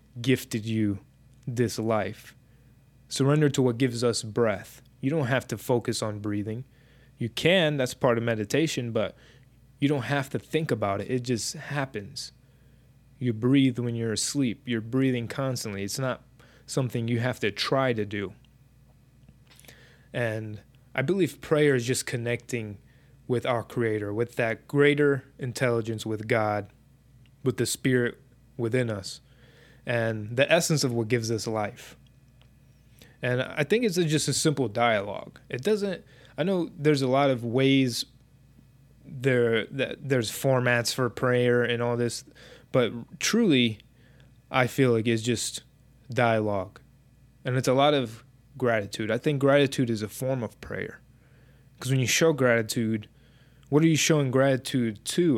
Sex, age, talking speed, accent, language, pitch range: male, 20-39, 150 wpm, American, English, 120-135 Hz